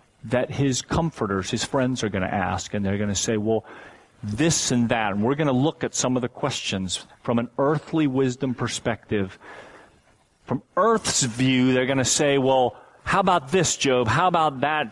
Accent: American